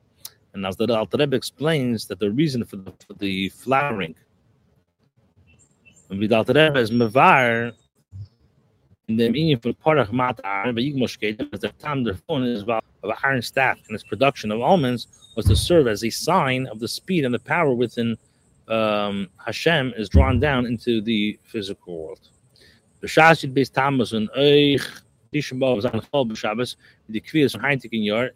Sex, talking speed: male, 175 wpm